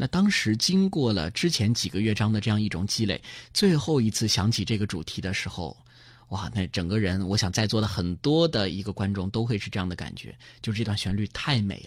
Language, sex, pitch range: Chinese, male, 100-125 Hz